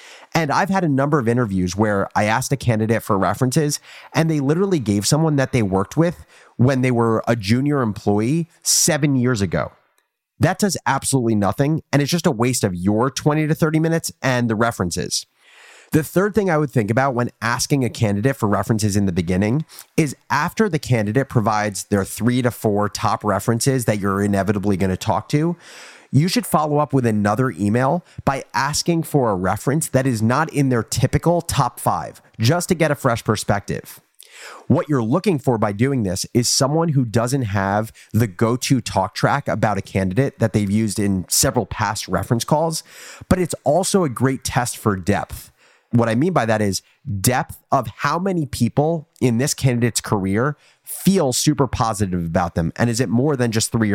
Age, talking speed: 30-49, 190 wpm